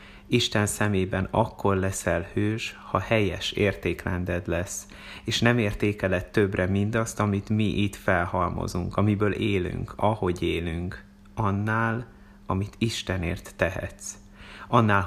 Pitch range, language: 90-105 Hz, Hungarian